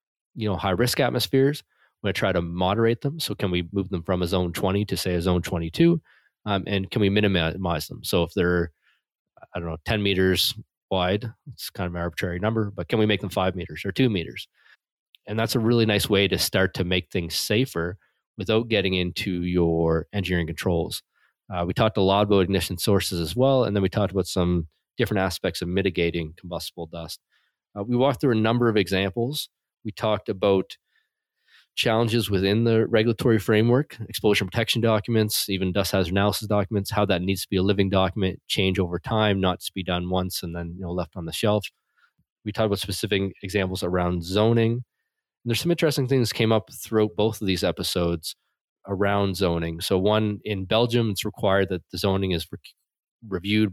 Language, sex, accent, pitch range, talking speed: English, male, American, 90-110 Hz, 190 wpm